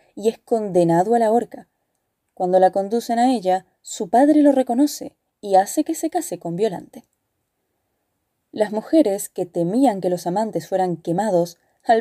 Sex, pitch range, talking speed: female, 180-260 Hz, 160 wpm